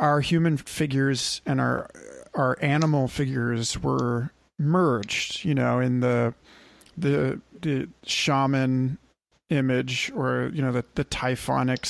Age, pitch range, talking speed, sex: 40-59, 125-150 Hz, 120 wpm, male